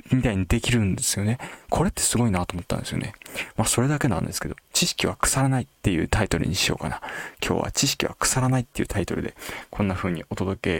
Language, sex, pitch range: Japanese, male, 95-135 Hz